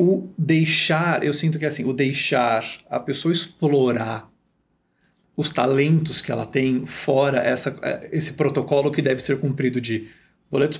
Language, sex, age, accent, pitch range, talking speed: Portuguese, male, 40-59, Brazilian, 135-170 Hz, 140 wpm